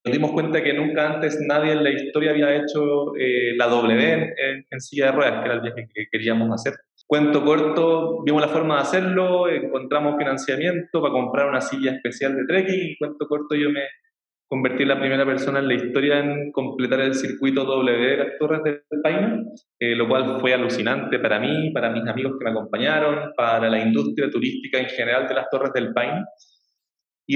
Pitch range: 130-155 Hz